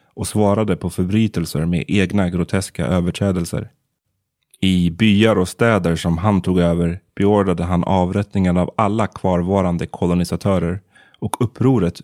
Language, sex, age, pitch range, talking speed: Swedish, male, 30-49, 90-105 Hz, 125 wpm